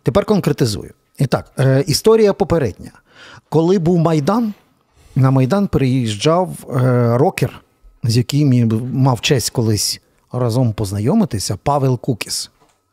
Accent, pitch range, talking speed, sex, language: native, 120-155 Hz, 105 wpm, male, Ukrainian